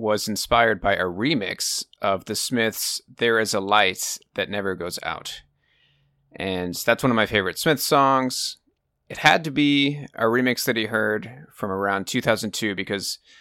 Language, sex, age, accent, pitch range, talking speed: English, male, 30-49, American, 105-130 Hz, 165 wpm